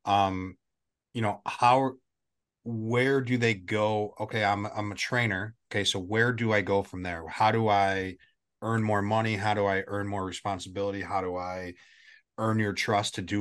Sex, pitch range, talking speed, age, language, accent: male, 95-110 Hz, 185 wpm, 30-49, English, American